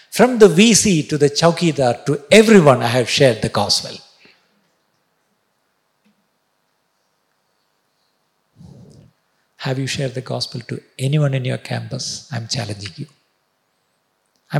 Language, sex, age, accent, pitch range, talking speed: Malayalam, male, 50-69, native, 110-155 Hz, 115 wpm